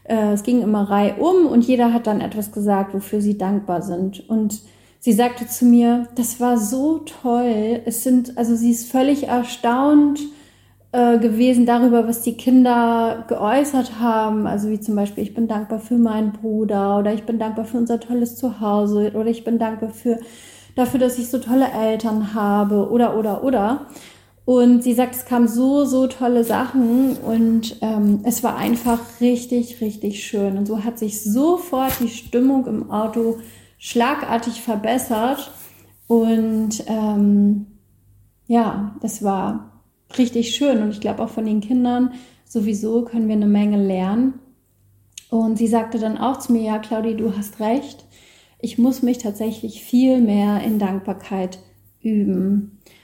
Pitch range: 210-245 Hz